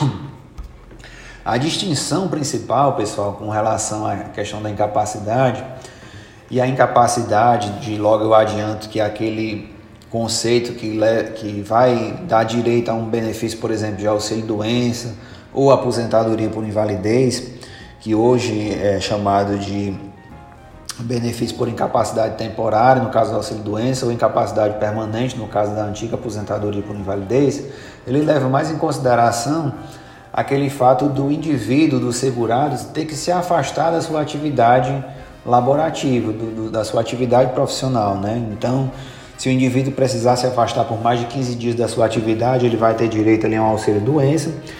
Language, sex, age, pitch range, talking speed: Portuguese, male, 30-49, 110-130 Hz, 140 wpm